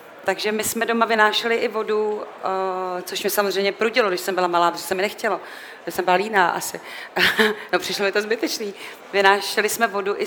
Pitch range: 180-205 Hz